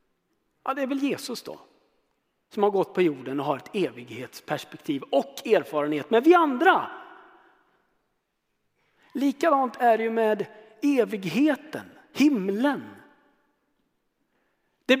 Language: Swedish